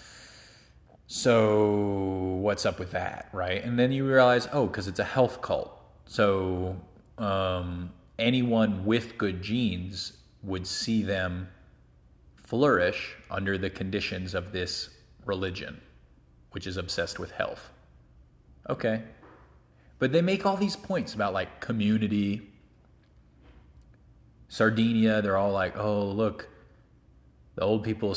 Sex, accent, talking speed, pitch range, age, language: male, American, 120 wpm, 70-110 Hz, 30-49, English